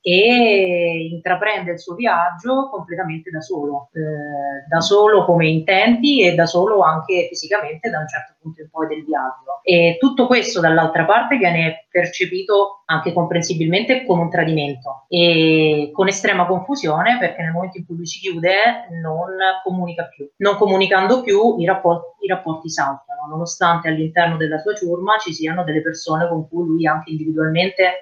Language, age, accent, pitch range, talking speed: Italian, 30-49, native, 155-190 Hz, 160 wpm